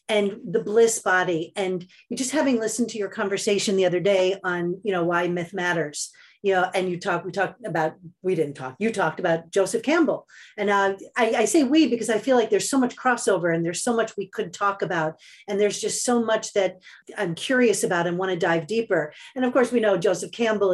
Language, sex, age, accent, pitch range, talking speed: English, female, 40-59, American, 180-220 Hz, 230 wpm